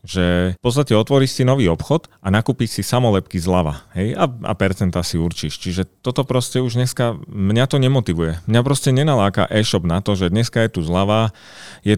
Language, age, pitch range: Slovak, 30-49, 95-115 Hz